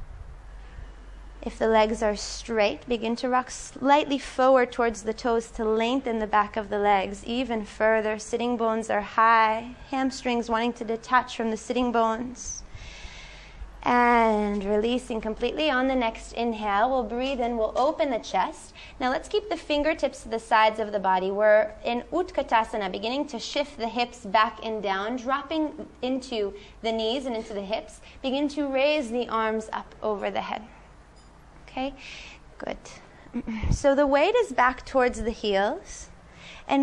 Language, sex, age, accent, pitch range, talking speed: Hebrew, female, 20-39, American, 220-275 Hz, 160 wpm